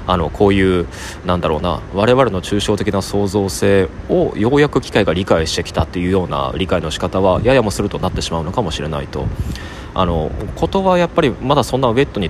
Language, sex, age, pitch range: Japanese, male, 20-39, 90-125 Hz